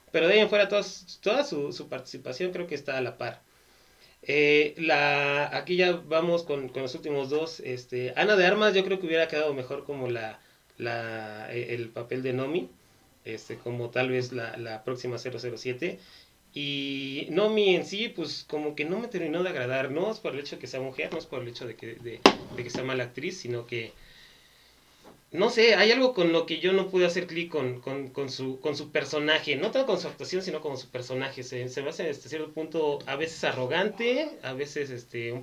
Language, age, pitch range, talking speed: Spanish, 30-49, 125-165 Hz, 220 wpm